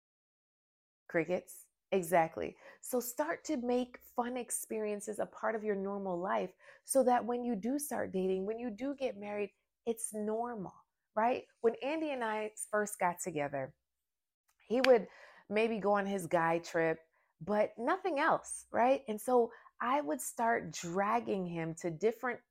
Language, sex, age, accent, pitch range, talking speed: English, female, 30-49, American, 195-285 Hz, 150 wpm